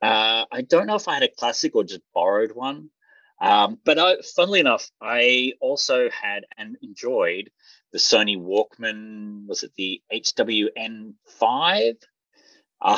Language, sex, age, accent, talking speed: English, male, 30-49, Australian, 145 wpm